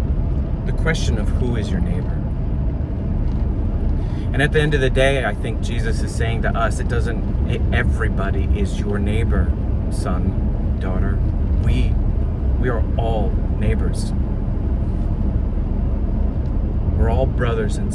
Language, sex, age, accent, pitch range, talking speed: English, male, 40-59, American, 70-100 Hz, 130 wpm